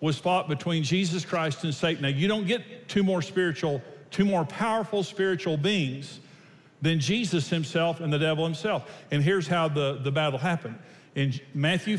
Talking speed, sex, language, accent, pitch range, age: 175 wpm, male, English, American, 135-170 Hz, 50-69